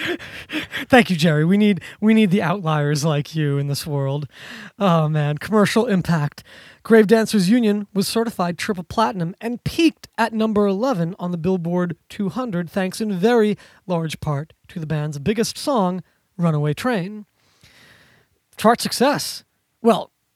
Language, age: English, 20-39